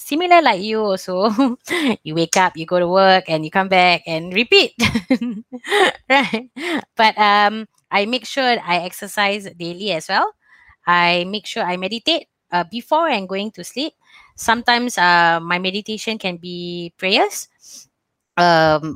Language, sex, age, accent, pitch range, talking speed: English, female, 20-39, Malaysian, 160-210 Hz, 150 wpm